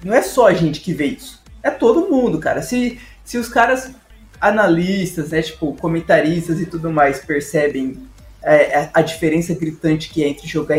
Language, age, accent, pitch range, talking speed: Portuguese, 20-39, Brazilian, 155-195 Hz, 180 wpm